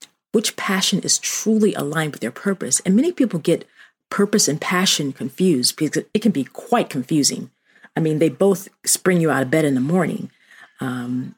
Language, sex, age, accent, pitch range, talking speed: English, female, 40-59, American, 145-180 Hz, 185 wpm